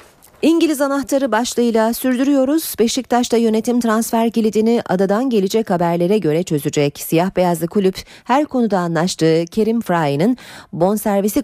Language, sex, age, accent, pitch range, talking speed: Turkish, female, 40-59, native, 160-225 Hz, 115 wpm